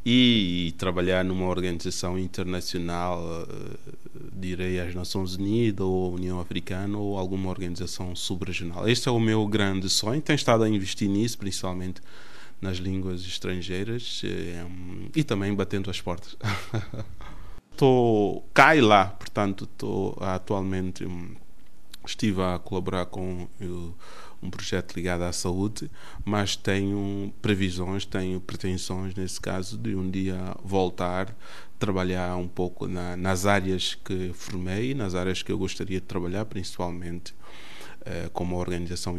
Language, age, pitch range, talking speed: Portuguese, 20-39, 90-105 Hz, 135 wpm